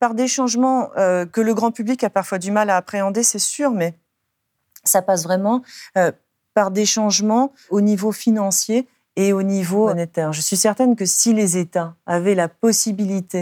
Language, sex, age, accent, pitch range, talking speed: French, female, 40-59, French, 190-230 Hz, 185 wpm